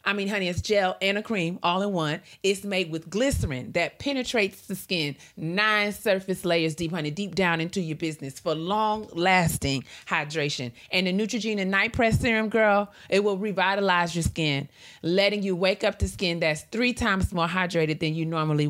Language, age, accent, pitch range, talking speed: English, 30-49, American, 150-195 Hz, 185 wpm